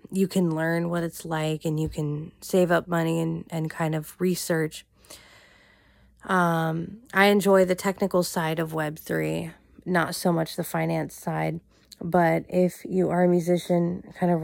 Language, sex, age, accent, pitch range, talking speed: English, female, 20-39, American, 160-180 Hz, 160 wpm